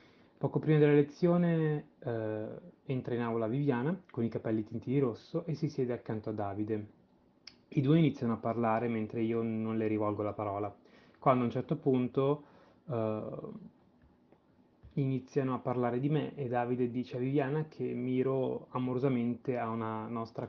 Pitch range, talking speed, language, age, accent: 110-140 Hz, 160 wpm, Italian, 20-39, native